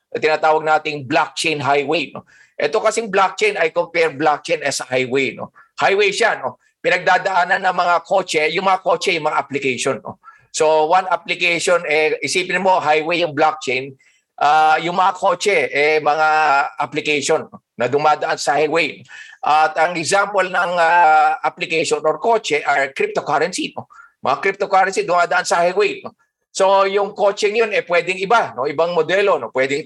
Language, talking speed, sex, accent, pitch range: Filipino, 165 wpm, male, native, 150-195 Hz